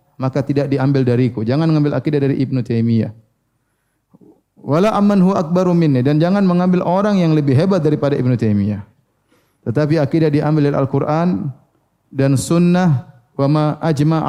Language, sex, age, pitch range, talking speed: Indonesian, male, 30-49, 130-170 Hz, 145 wpm